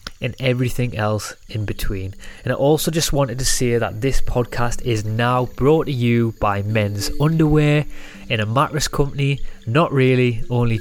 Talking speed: 165 wpm